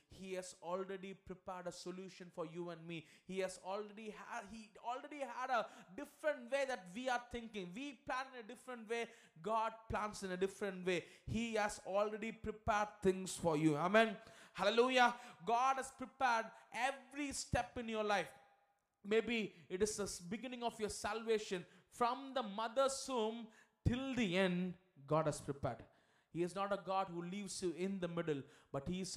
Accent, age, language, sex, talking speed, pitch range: Indian, 20-39, English, male, 170 wpm, 175-225 Hz